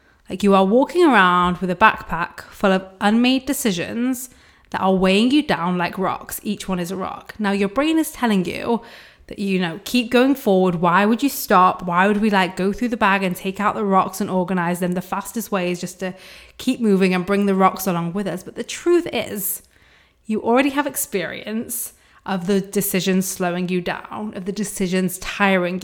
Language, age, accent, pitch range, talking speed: English, 20-39, British, 185-225 Hz, 205 wpm